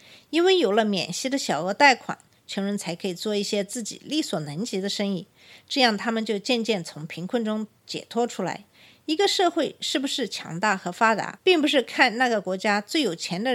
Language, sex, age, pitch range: Chinese, female, 50-69, 195-270 Hz